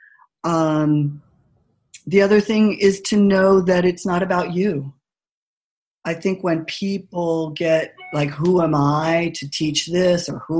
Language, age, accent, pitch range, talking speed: English, 40-59, American, 150-190 Hz, 145 wpm